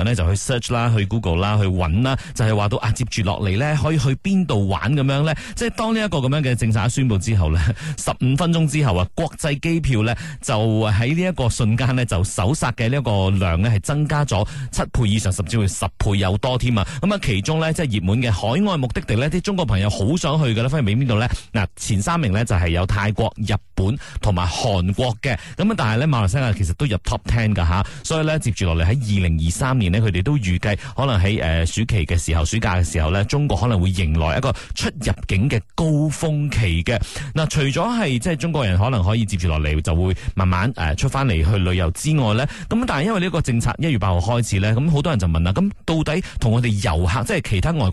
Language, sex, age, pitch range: Chinese, male, 30-49, 100-145 Hz